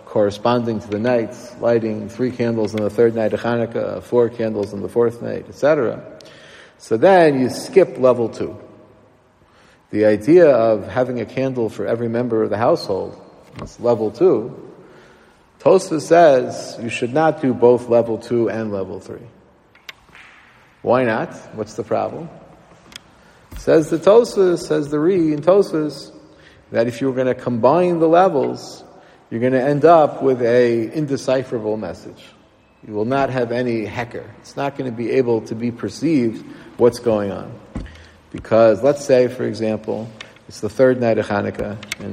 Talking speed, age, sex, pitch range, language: 160 wpm, 50-69, male, 110-130 Hz, English